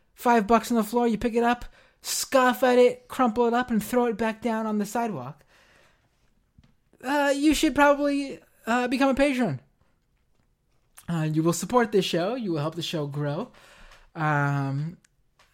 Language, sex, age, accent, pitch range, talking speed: English, male, 20-39, American, 155-235 Hz, 170 wpm